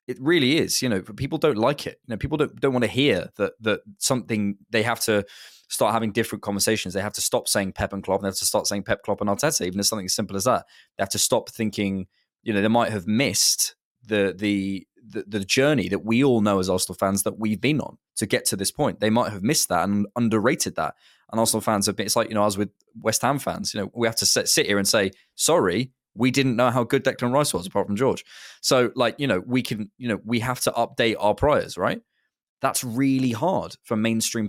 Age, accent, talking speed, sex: 20-39, British, 260 wpm, male